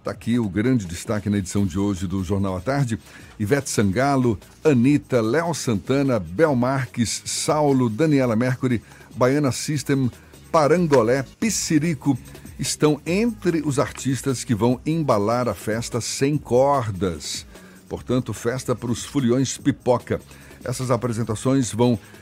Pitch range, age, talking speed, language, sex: 105-140 Hz, 60-79, 125 wpm, Portuguese, male